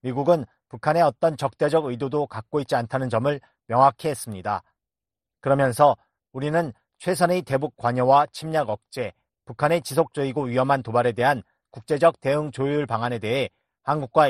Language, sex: Korean, male